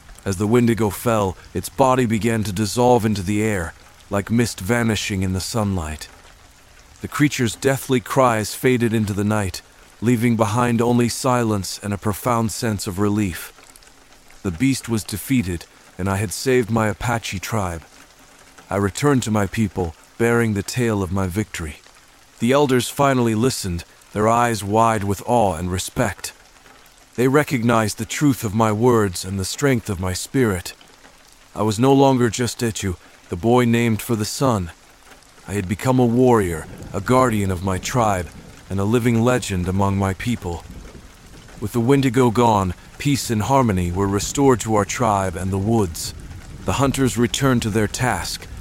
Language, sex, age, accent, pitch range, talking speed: English, male, 40-59, American, 95-120 Hz, 165 wpm